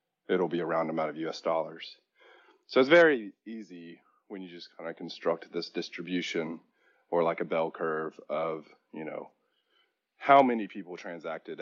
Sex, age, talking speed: male, 30-49, 165 wpm